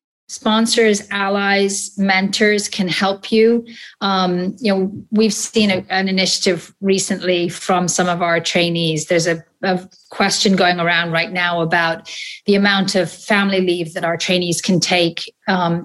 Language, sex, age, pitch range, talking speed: English, female, 30-49, 180-210 Hz, 150 wpm